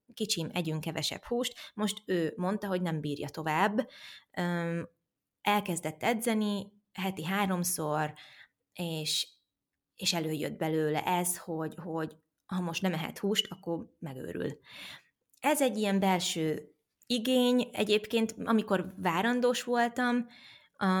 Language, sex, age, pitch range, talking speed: Hungarian, female, 20-39, 160-210 Hz, 110 wpm